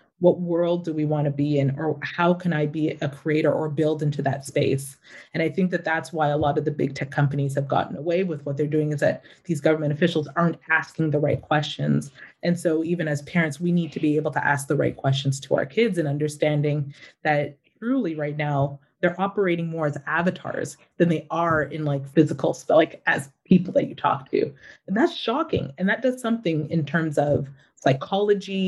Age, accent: 30-49, American